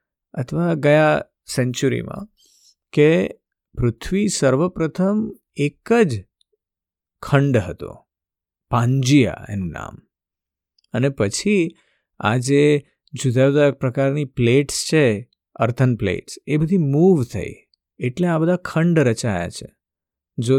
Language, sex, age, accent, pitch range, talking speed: Gujarati, male, 50-69, native, 125-170 Hz, 90 wpm